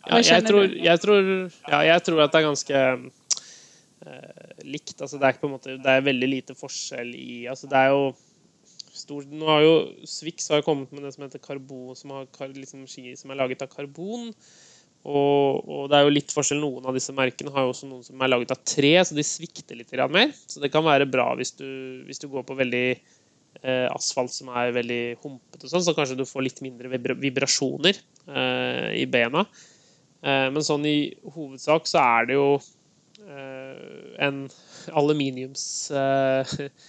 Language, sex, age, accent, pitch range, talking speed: Swedish, male, 20-39, native, 130-150 Hz, 170 wpm